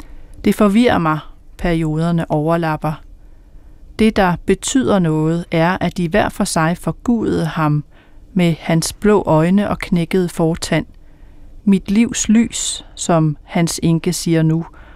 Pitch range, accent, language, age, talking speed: 150-195 Hz, native, Danish, 40-59, 130 wpm